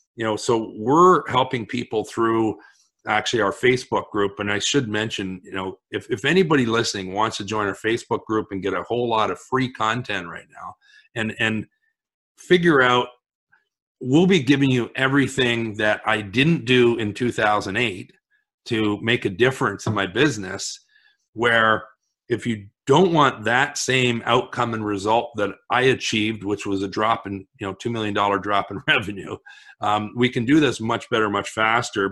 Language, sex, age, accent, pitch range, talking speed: English, male, 40-59, American, 100-120 Hz, 175 wpm